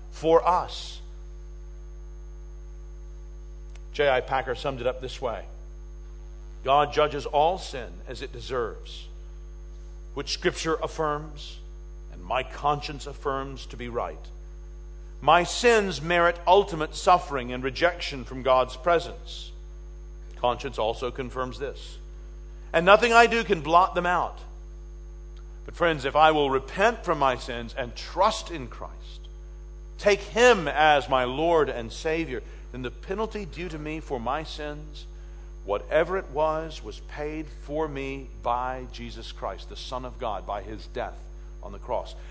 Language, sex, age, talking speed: English, male, 50-69, 140 wpm